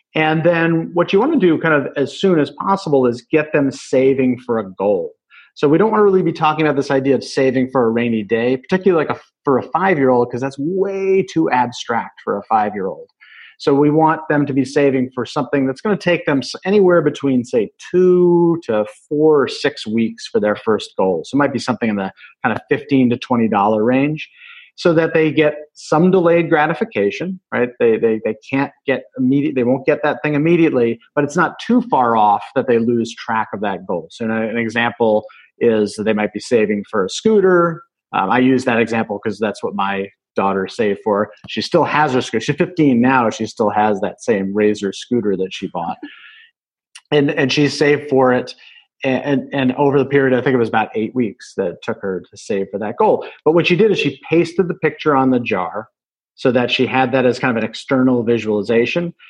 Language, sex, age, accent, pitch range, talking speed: English, male, 40-59, American, 115-160 Hz, 220 wpm